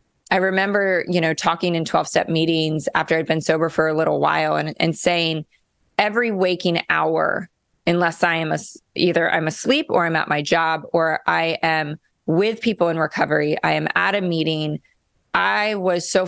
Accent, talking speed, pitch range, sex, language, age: American, 185 wpm, 160-195 Hz, female, English, 20-39